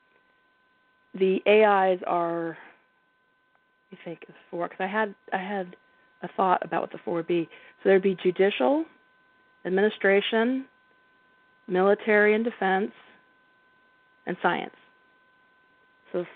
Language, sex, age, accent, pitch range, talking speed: English, female, 40-59, American, 185-255 Hz, 115 wpm